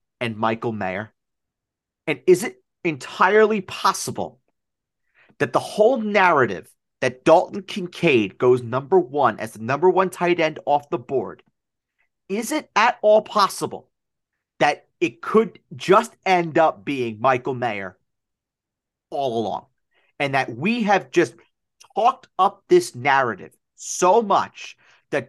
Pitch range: 145-230 Hz